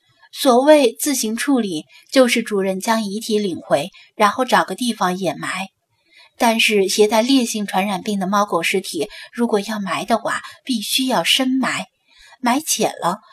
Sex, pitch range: female, 200-265 Hz